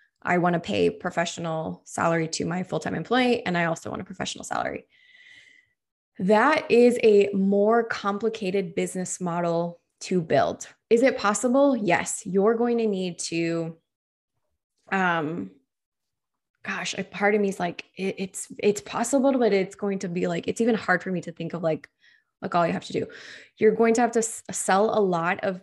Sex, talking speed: female, 185 wpm